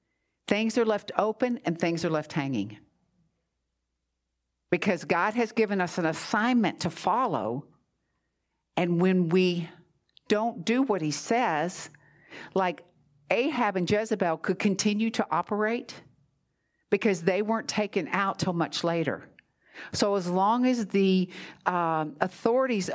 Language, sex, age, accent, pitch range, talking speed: English, female, 50-69, American, 150-210 Hz, 130 wpm